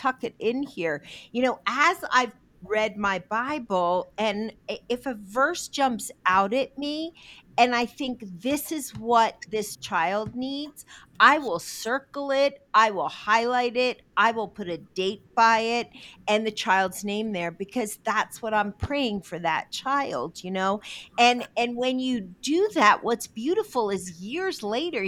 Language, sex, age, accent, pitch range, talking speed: English, female, 50-69, American, 205-290 Hz, 165 wpm